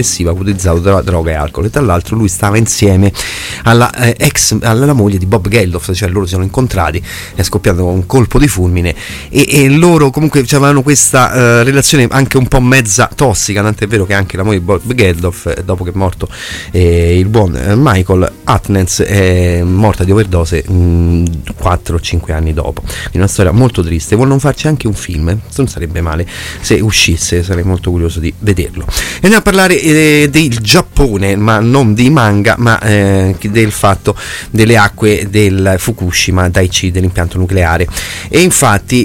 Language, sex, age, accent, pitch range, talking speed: Italian, male, 30-49, native, 90-120 Hz, 175 wpm